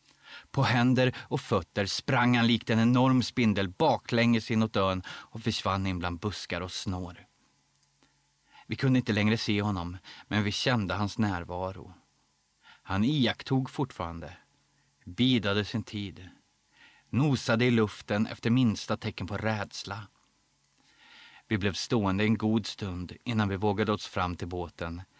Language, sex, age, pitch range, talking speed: Swedish, male, 30-49, 95-120 Hz, 140 wpm